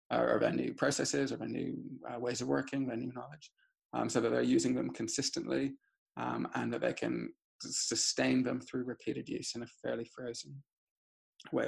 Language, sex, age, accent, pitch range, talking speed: English, male, 20-39, British, 125-155 Hz, 180 wpm